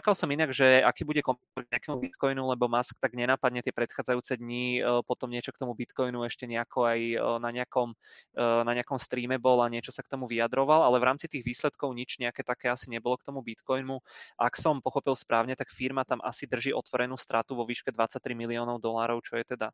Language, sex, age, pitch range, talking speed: Czech, male, 20-39, 120-130 Hz, 200 wpm